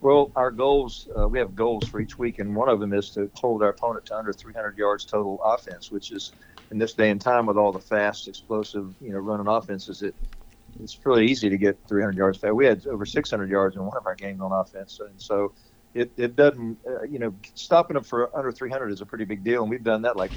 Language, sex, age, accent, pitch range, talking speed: English, male, 50-69, American, 105-125 Hz, 250 wpm